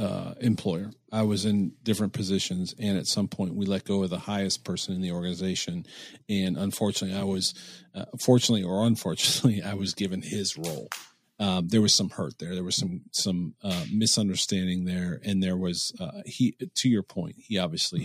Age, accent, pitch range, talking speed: 40-59, American, 90-110 Hz, 190 wpm